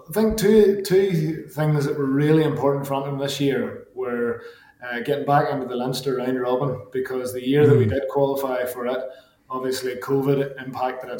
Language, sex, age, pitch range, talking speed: English, male, 20-39, 125-140 Hz, 190 wpm